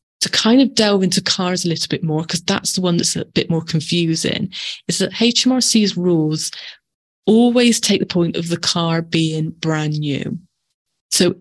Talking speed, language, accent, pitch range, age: 180 wpm, English, British, 160-195 Hz, 30-49